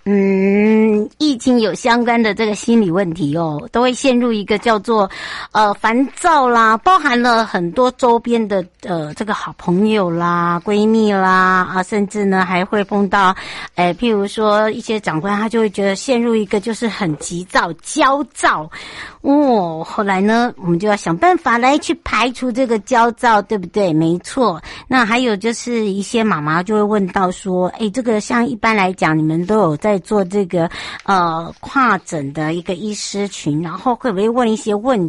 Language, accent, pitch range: Chinese, American, 180-235 Hz